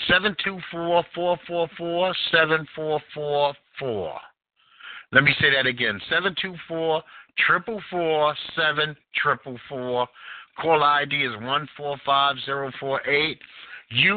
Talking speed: 70 wpm